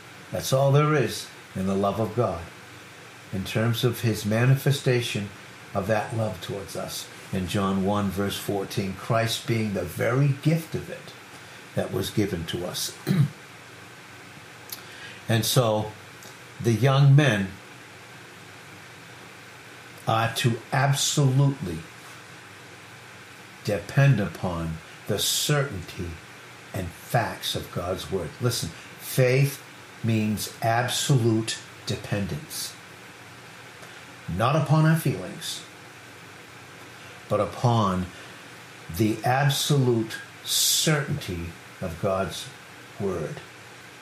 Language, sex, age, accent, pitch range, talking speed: English, male, 60-79, American, 100-140 Hz, 95 wpm